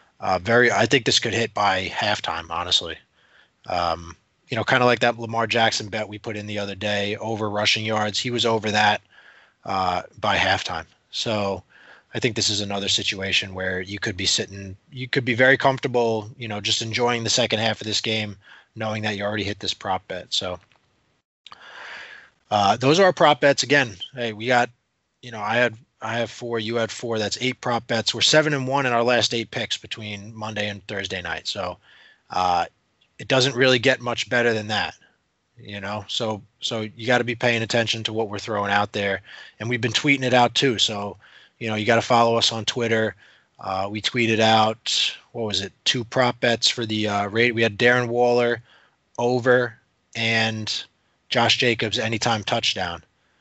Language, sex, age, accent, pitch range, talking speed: English, male, 20-39, American, 105-120 Hz, 200 wpm